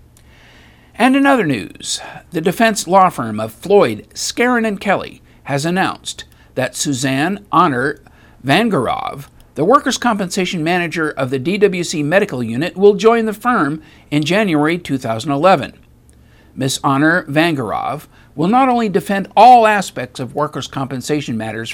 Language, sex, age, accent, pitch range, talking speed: English, male, 60-79, American, 135-200 Hz, 130 wpm